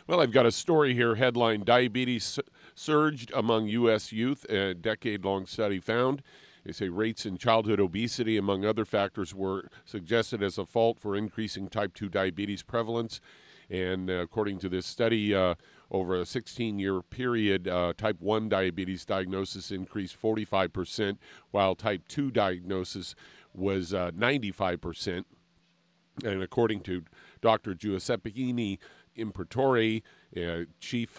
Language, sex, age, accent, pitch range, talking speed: English, male, 50-69, American, 95-115 Hz, 130 wpm